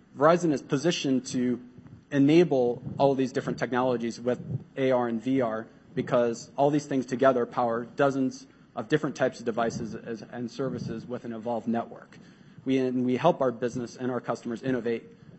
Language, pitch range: English, 120-140 Hz